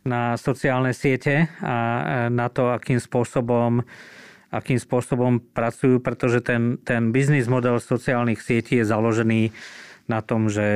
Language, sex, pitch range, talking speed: Slovak, male, 110-130 Hz, 125 wpm